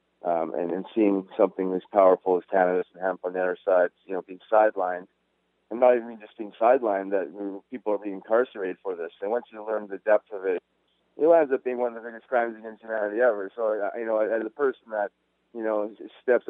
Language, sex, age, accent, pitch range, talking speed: English, male, 30-49, American, 100-120 Hz, 225 wpm